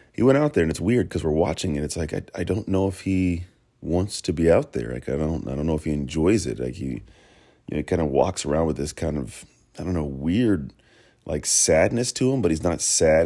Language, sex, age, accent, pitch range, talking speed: English, male, 30-49, American, 80-95 Hz, 265 wpm